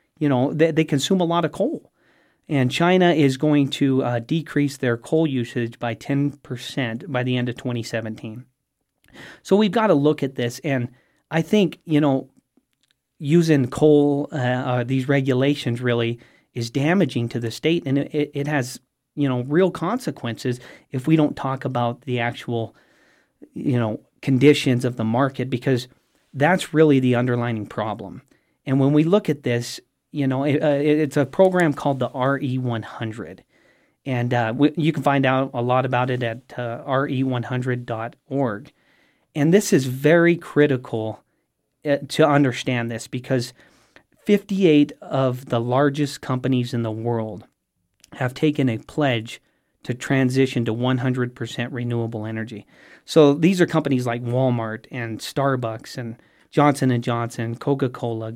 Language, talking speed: English, 150 wpm